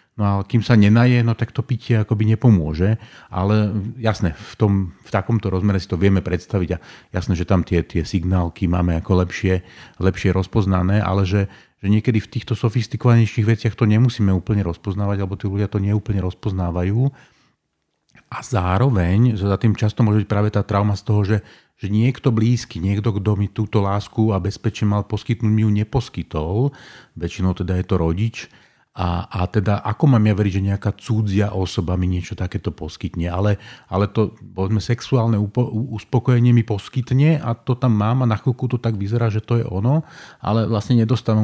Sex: male